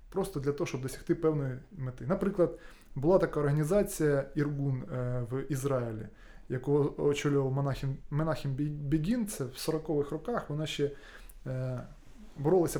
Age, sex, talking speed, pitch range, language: 20-39, male, 115 wpm, 135-180 Hz, Ukrainian